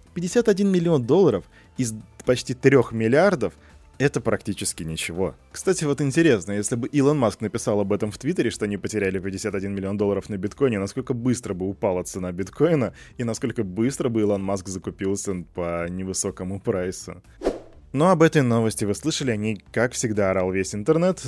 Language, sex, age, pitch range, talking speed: Russian, male, 20-39, 100-135 Hz, 165 wpm